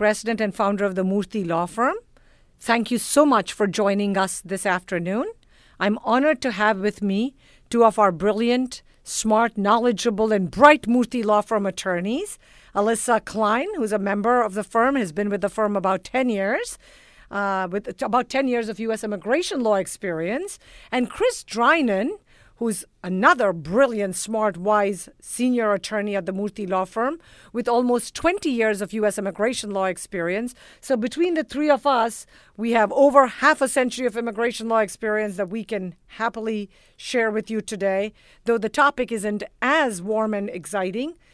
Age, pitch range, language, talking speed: 50-69, 200-245 Hz, English, 170 wpm